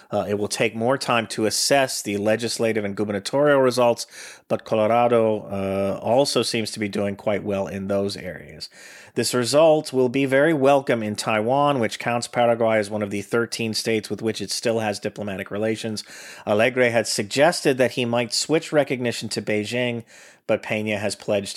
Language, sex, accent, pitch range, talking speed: English, male, American, 100-120 Hz, 180 wpm